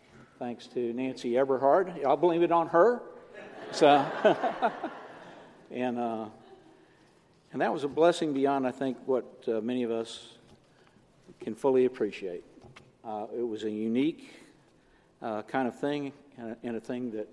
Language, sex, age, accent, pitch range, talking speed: English, male, 50-69, American, 115-160 Hz, 150 wpm